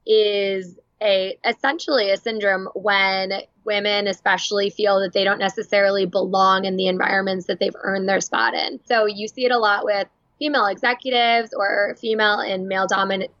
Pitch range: 195-245 Hz